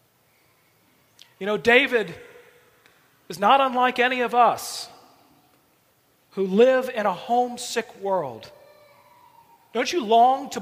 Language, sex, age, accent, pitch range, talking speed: English, male, 40-59, American, 215-265 Hz, 105 wpm